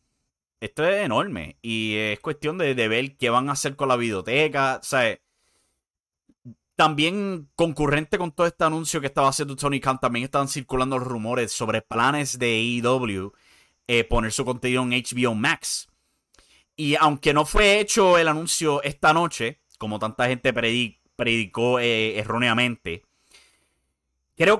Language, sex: English, male